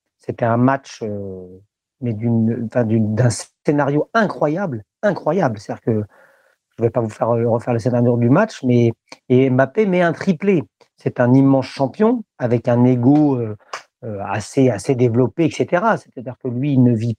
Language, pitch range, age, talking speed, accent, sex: French, 125-175 Hz, 50-69, 170 wpm, French, male